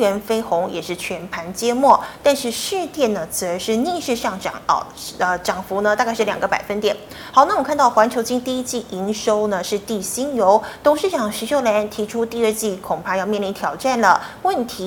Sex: female